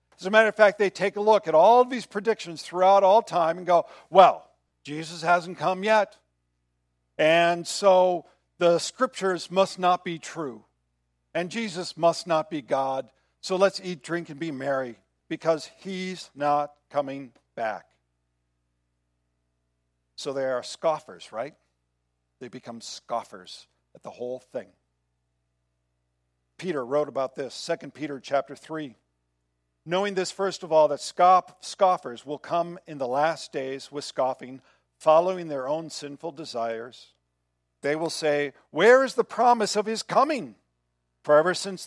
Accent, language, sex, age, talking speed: American, English, male, 50-69, 145 wpm